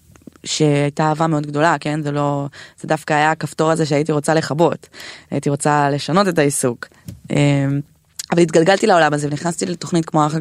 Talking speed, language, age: 160 wpm, Hebrew, 20-39